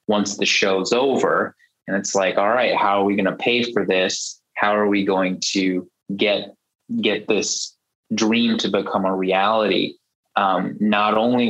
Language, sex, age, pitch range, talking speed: English, male, 20-39, 95-110 Hz, 170 wpm